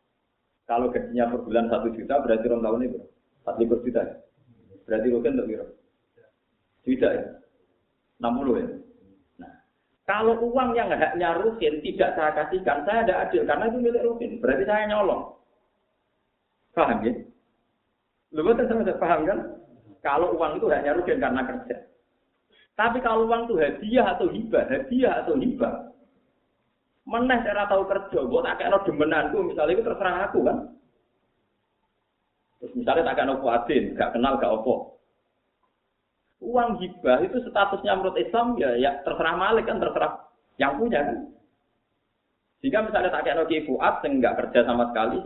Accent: native